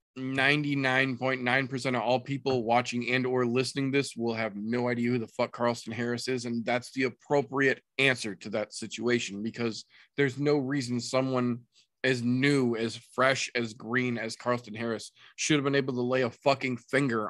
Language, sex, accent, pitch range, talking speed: English, male, American, 110-130 Hz, 175 wpm